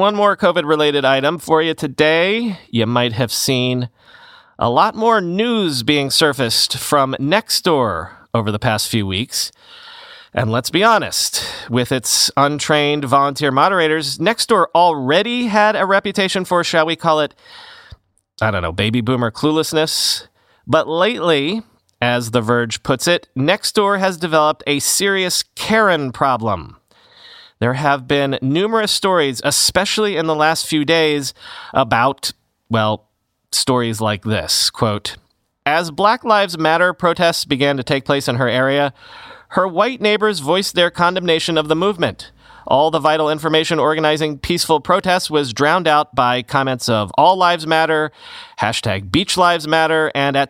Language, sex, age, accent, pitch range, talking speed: English, male, 40-59, American, 130-180 Hz, 145 wpm